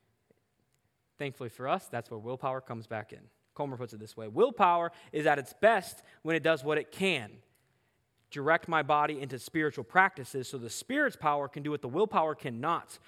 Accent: American